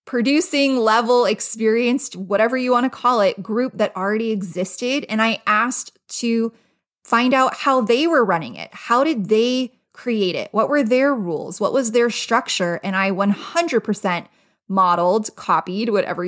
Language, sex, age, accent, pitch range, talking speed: English, female, 20-39, American, 195-245 Hz, 160 wpm